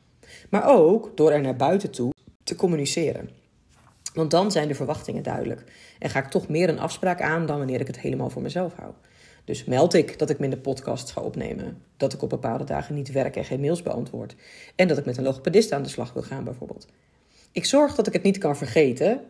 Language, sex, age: Dutch, female, 40-59